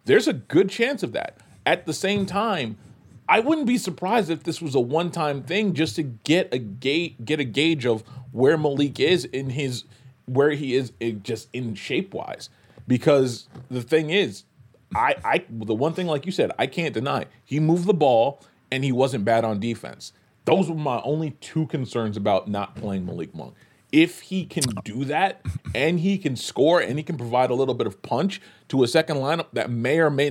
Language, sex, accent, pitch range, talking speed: English, male, American, 115-160 Hz, 205 wpm